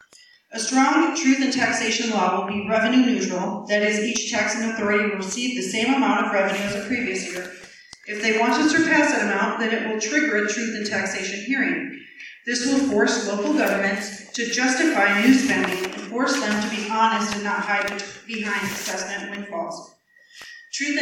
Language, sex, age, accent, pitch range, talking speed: English, female, 40-59, American, 205-255 Hz, 185 wpm